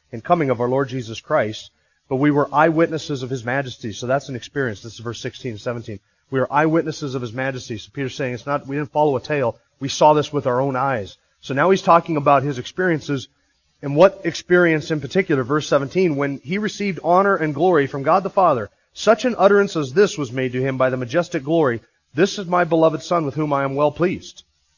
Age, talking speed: 30-49, 225 wpm